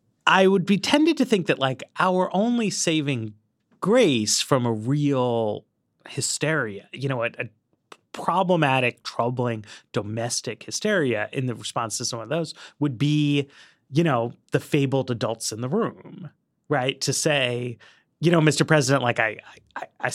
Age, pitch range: 30-49, 120-165 Hz